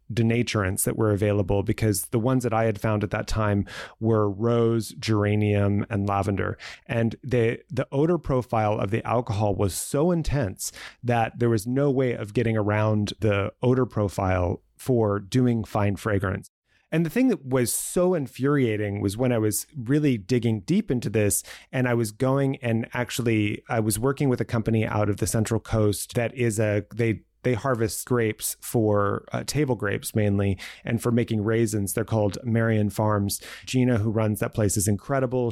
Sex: male